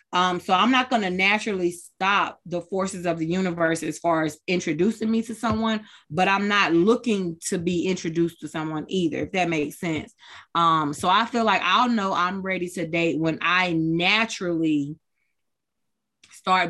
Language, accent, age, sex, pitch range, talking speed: English, American, 20-39, female, 170-205 Hz, 175 wpm